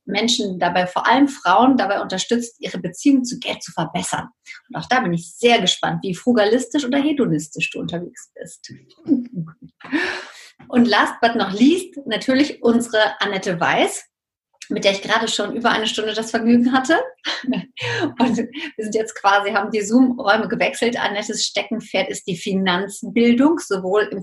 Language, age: German, 30-49